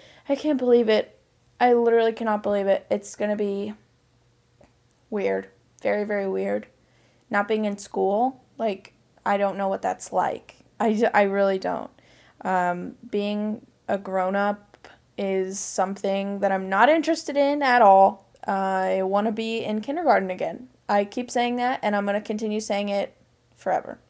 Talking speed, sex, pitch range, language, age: 160 wpm, female, 190-225 Hz, English, 10-29